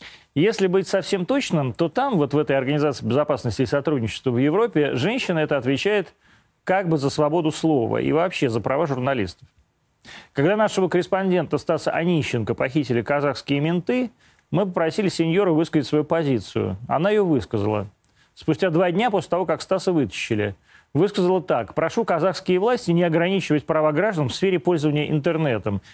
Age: 30-49